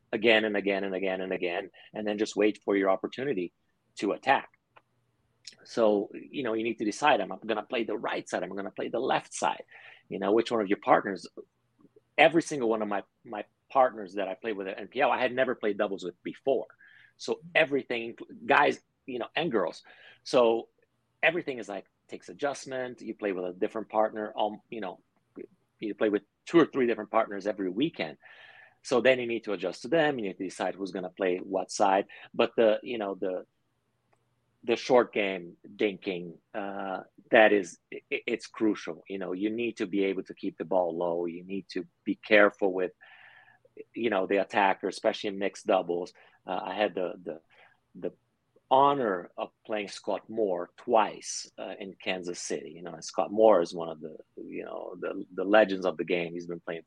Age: 30-49